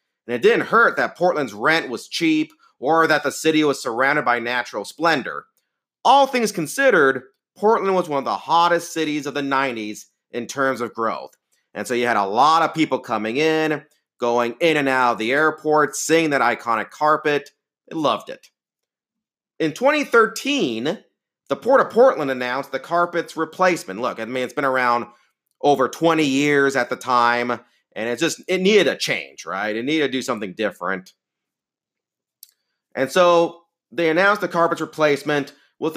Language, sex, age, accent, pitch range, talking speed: English, male, 40-59, American, 125-165 Hz, 170 wpm